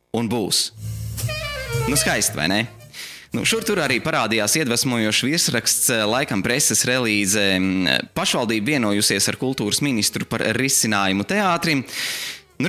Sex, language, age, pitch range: male, English, 20-39, 100-130 Hz